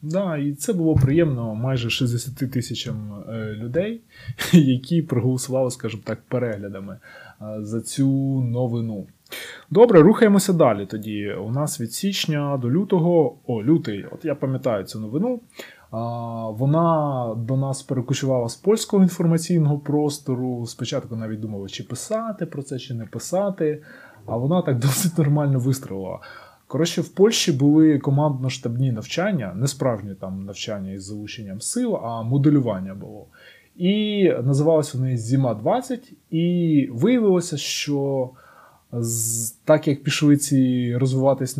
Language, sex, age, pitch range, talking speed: Ukrainian, male, 20-39, 120-160 Hz, 125 wpm